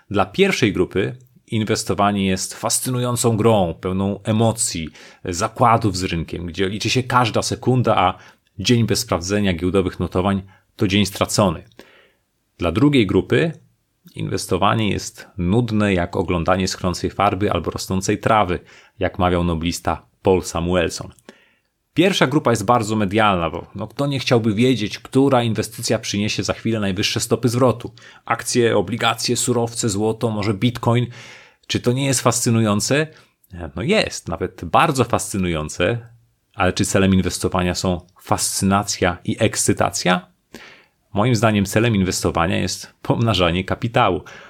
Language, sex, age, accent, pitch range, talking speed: Polish, male, 30-49, native, 95-115 Hz, 125 wpm